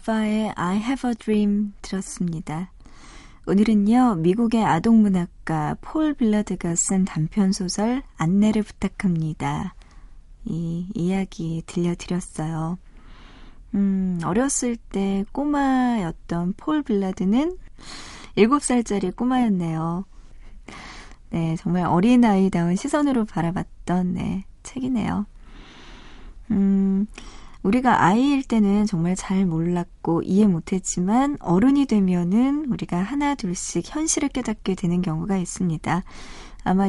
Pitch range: 175-220 Hz